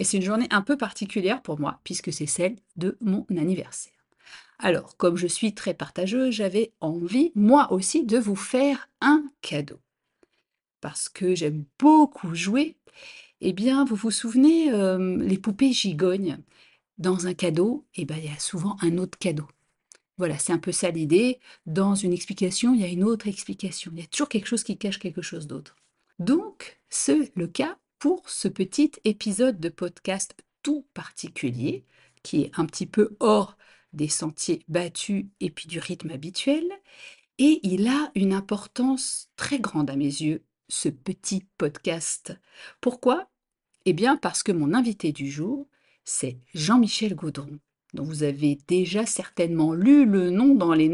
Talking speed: 170 wpm